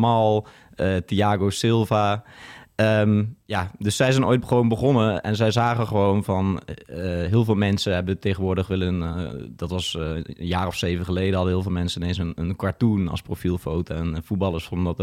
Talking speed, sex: 190 wpm, male